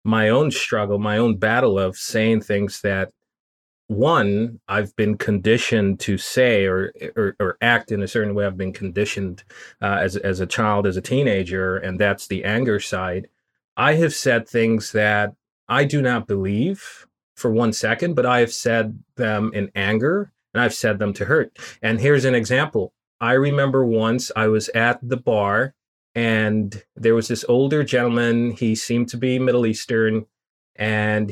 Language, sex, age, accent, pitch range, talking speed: English, male, 30-49, American, 105-125 Hz, 170 wpm